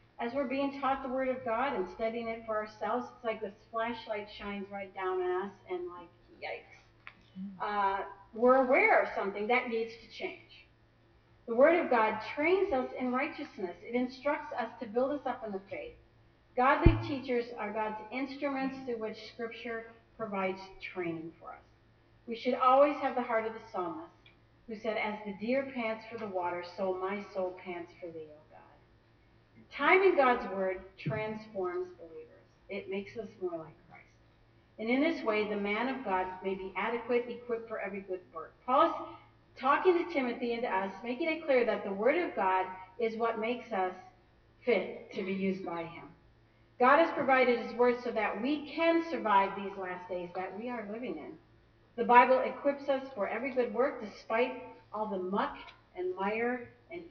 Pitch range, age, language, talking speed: 185-250 Hz, 40-59, English, 185 wpm